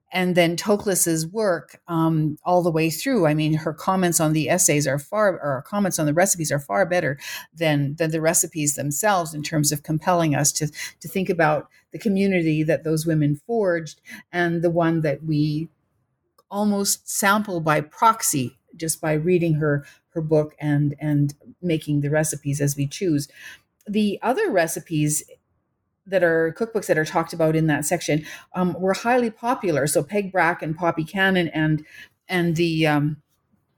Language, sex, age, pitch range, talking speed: English, female, 50-69, 150-185 Hz, 170 wpm